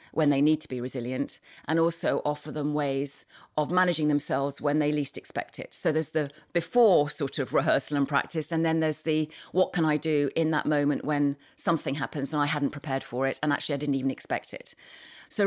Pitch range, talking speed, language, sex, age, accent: 145-180 Hz, 215 wpm, English, female, 30-49, British